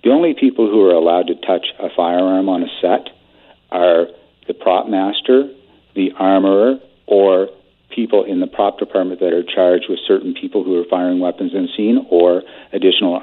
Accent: American